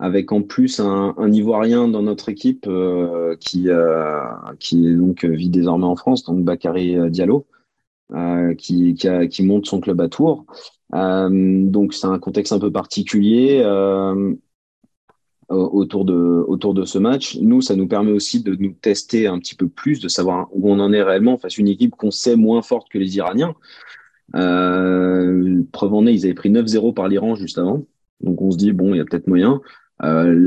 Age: 30-49